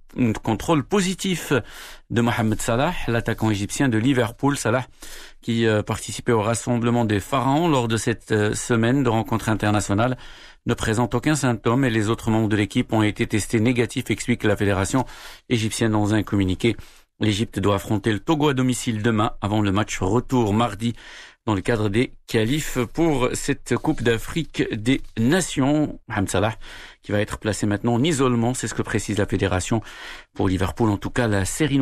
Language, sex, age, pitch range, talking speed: Arabic, male, 50-69, 105-130 Hz, 175 wpm